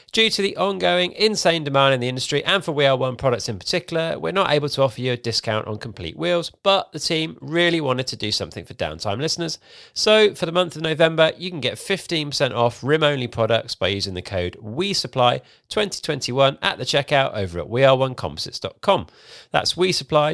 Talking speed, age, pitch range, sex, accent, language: 210 wpm, 40-59, 115-165 Hz, male, British, English